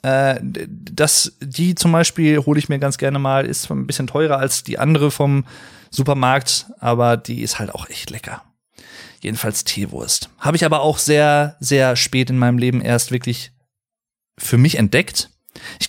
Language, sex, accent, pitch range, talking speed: German, male, German, 115-145 Hz, 160 wpm